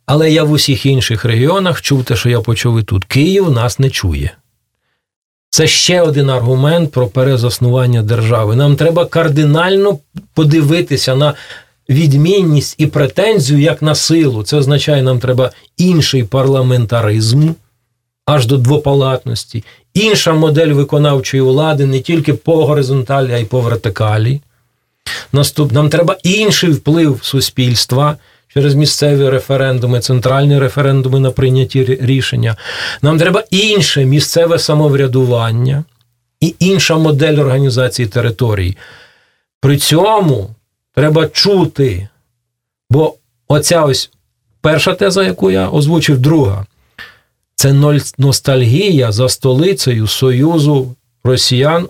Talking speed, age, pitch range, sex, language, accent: 115 wpm, 40-59, 125-155 Hz, male, Russian, native